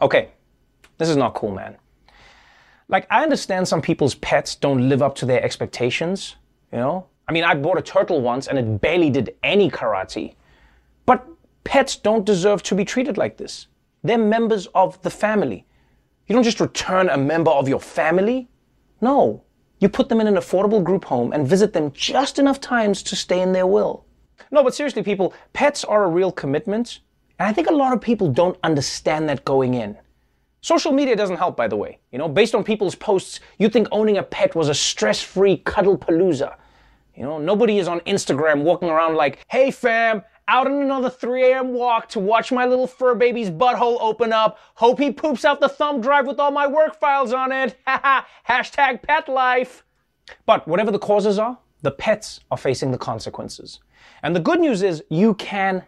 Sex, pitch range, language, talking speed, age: male, 175-255 Hz, English, 195 wpm, 30-49